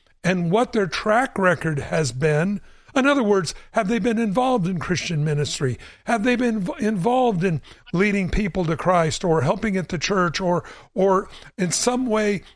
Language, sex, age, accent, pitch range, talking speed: English, male, 60-79, American, 165-205 Hz, 170 wpm